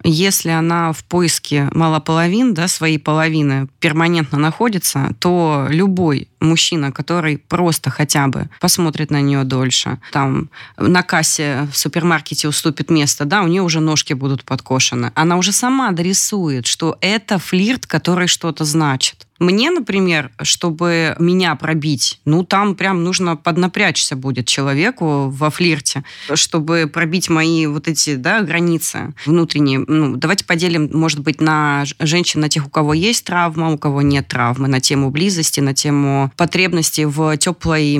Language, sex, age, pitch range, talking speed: Russian, female, 20-39, 145-175 Hz, 145 wpm